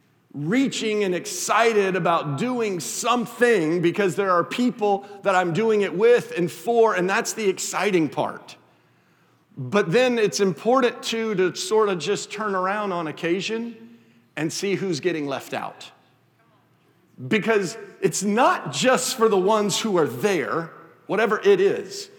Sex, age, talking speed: male, 50-69, 145 wpm